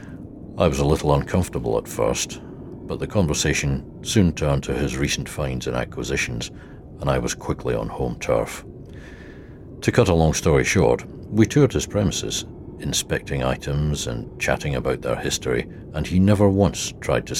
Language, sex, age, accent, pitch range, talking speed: English, male, 60-79, British, 70-90 Hz, 165 wpm